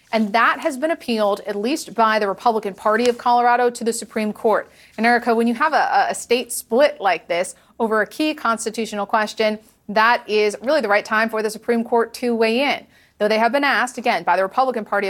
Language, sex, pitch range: English, female, 205-245 Hz